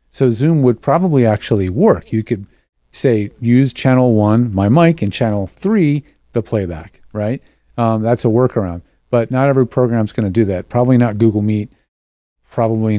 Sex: male